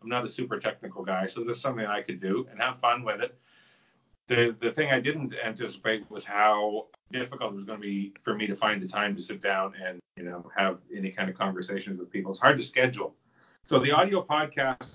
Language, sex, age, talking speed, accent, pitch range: English, male, 40-59, 235 wpm, American, 100-130 Hz